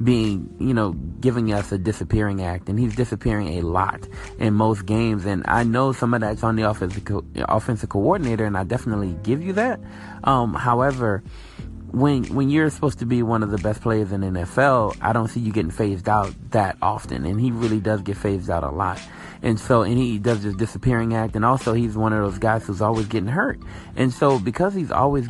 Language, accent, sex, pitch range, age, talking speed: English, American, male, 105-135 Hz, 30-49, 215 wpm